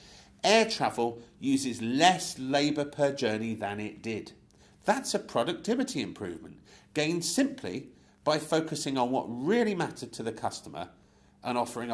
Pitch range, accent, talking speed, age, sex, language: 120-205 Hz, British, 135 wpm, 50-69, male, English